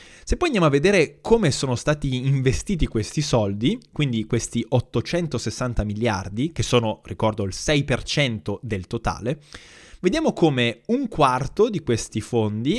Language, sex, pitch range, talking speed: Italian, male, 115-145 Hz, 135 wpm